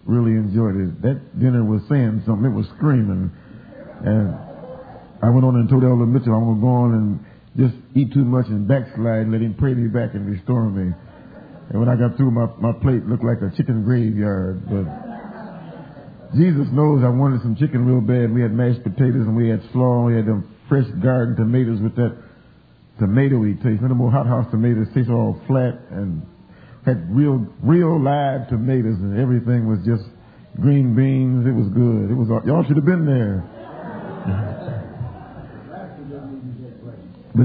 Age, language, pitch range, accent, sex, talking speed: 50-69, English, 110-140 Hz, American, male, 185 wpm